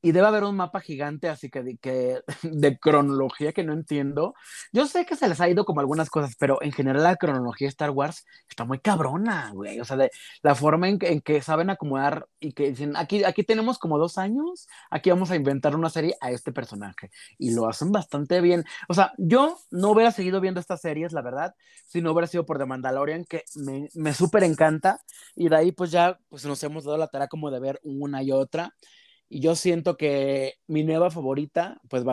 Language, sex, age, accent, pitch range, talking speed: Spanish, male, 30-49, Mexican, 140-180 Hz, 225 wpm